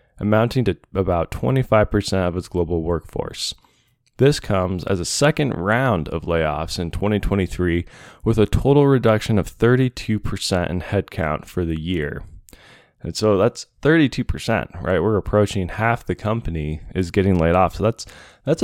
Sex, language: male, English